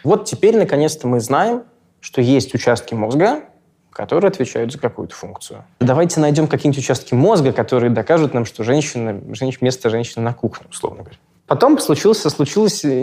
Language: Russian